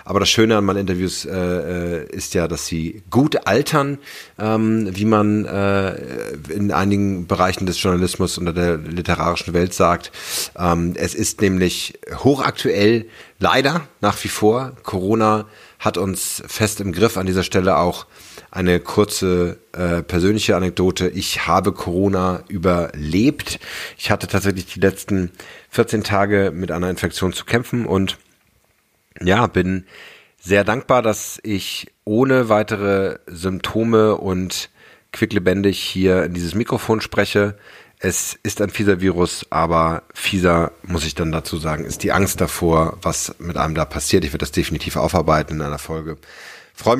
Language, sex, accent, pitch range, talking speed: German, male, German, 90-105 Hz, 145 wpm